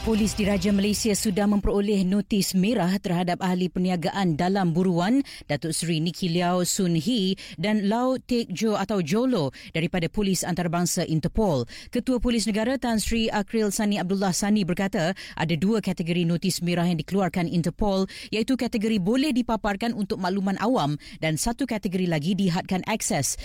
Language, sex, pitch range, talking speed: Malay, female, 180-225 Hz, 145 wpm